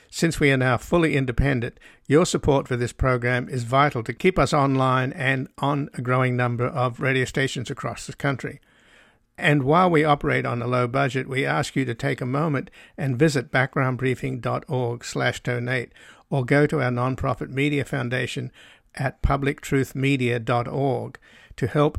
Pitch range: 125-145 Hz